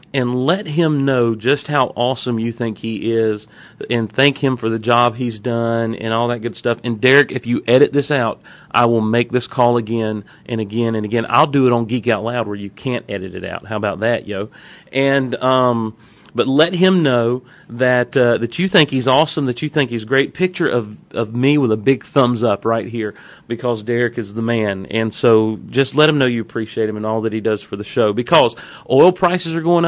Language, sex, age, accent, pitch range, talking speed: English, male, 40-59, American, 115-145 Hz, 230 wpm